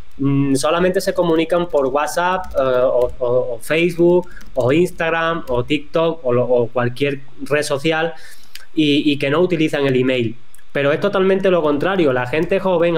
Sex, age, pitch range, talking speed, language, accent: male, 20-39, 130-165 Hz, 160 wpm, Spanish, Spanish